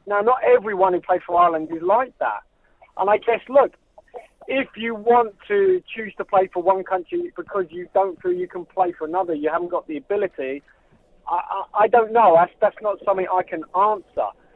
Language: English